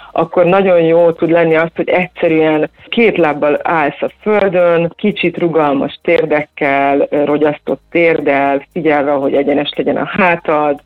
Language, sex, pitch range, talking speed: Hungarian, female, 150-175 Hz, 135 wpm